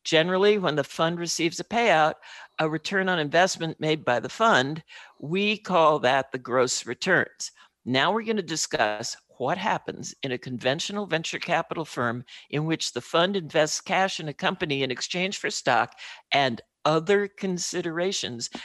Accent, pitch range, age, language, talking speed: American, 140-190 Hz, 60-79, English, 160 wpm